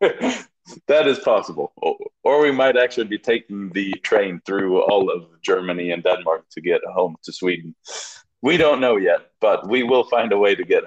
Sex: male